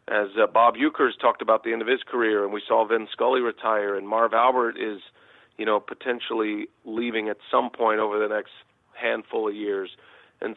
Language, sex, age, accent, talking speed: English, male, 40-59, American, 200 wpm